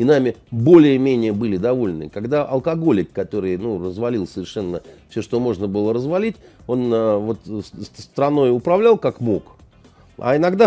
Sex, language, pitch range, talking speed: male, Russian, 90-135 Hz, 130 wpm